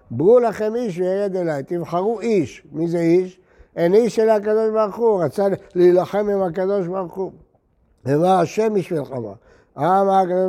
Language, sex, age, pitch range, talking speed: Hebrew, male, 60-79, 155-195 Hz, 160 wpm